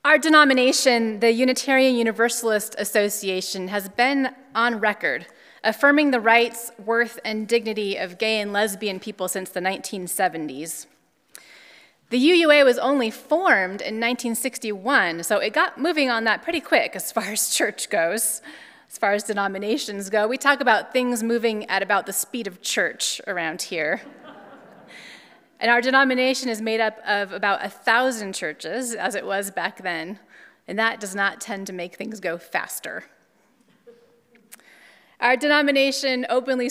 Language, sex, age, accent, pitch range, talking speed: English, female, 30-49, American, 200-250 Hz, 145 wpm